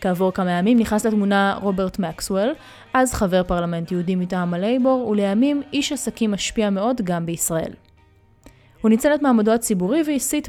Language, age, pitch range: Hebrew, 20-39, 180-235 Hz